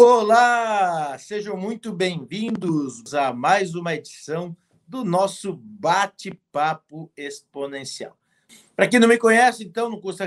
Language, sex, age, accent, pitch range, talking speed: Portuguese, male, 50-69, Brazilian, 145-200 Hz, 115 wpm